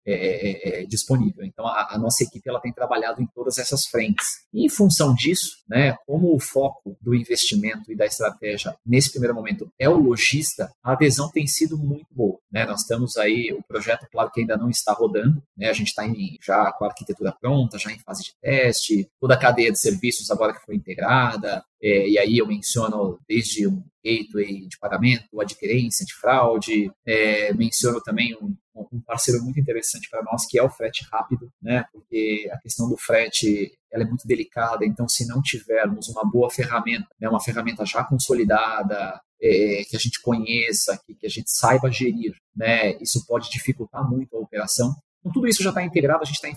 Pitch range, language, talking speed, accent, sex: 110-145 Hz, Portuguese, 195 wpm, Brazilian, male